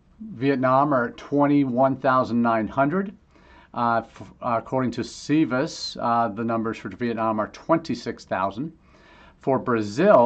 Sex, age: male, 40-59